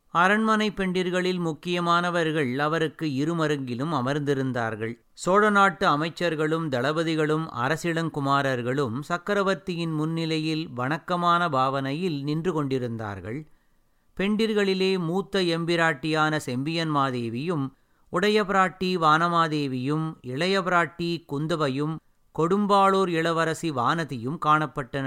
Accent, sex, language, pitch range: native, male, Tamil, 145-175 Hz